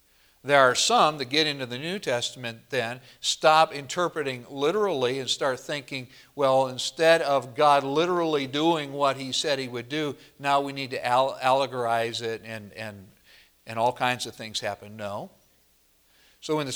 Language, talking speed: English, 165 wpm